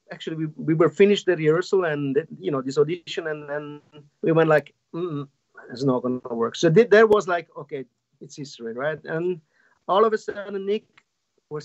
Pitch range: 155-215 Hz